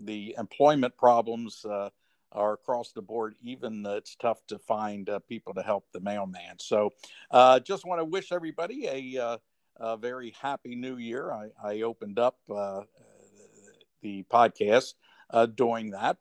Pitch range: 105-130 Hz